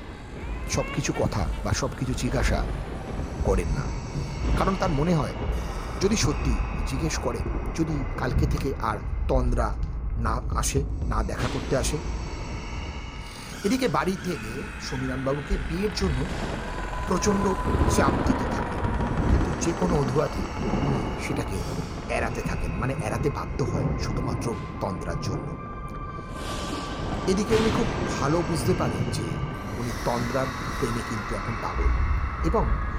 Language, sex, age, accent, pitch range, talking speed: Bengali, male, 50-69, native, 100-150 Hz, 115 wpm